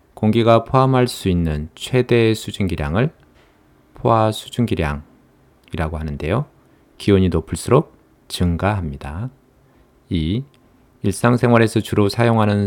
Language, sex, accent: Korean, male, native